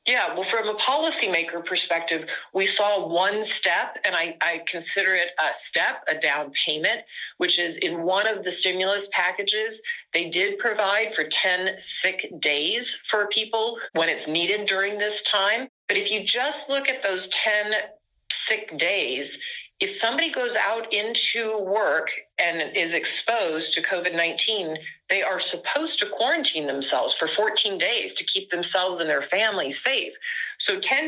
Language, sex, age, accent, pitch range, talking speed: English, female, 40-59, American, 180-270 Hz, 160 wpm